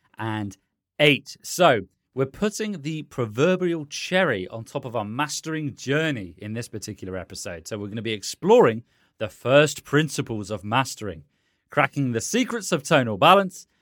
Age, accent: 30-49, British